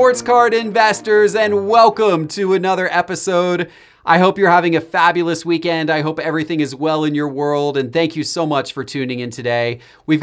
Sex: male